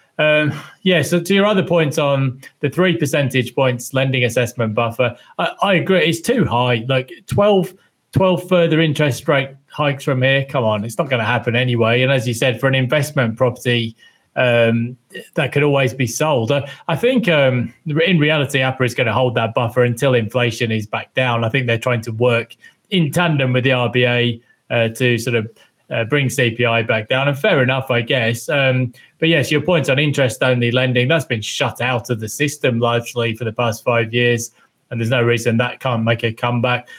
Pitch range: 120-145 Hz